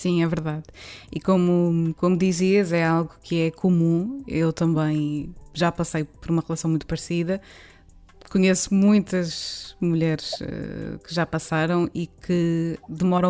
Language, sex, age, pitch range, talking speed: Portuguese, female, 20-39, 155-190 Hz, 135 wpm